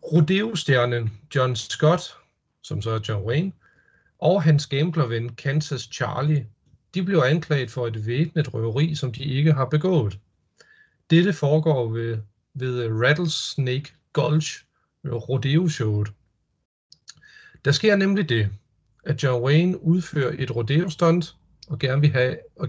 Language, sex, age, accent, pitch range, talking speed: Danish, male, 40-59, native, 120-160 Hz, 115 wpm